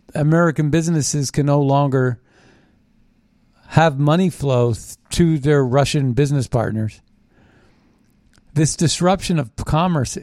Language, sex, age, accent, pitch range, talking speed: English, male, 50-69, American, 125-155 Hz, 100 wpm